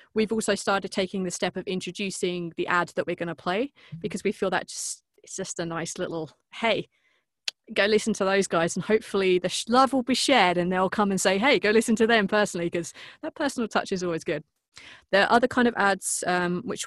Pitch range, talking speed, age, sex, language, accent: 180-225 Hz, 230 wpm, 20-39, female, English, British